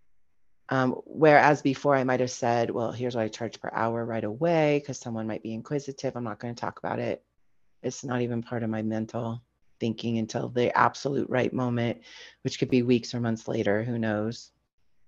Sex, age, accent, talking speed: female, 40-59, American, 195 wpm